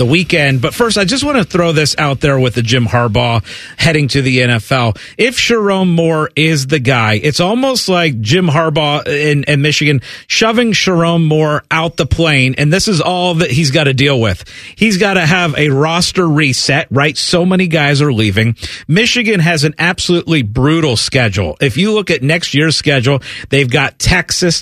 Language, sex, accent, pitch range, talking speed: English, male, American, 135-185 Hz, 195 wpm